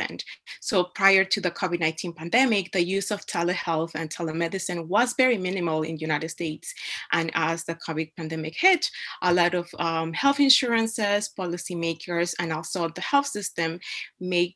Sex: female